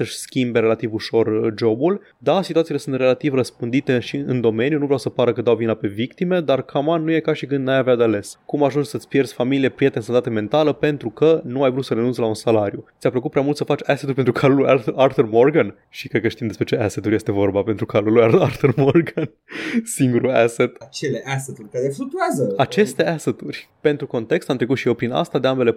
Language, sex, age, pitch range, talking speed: Romanian, male, 20-39, 120-150 Hz, 210 wpm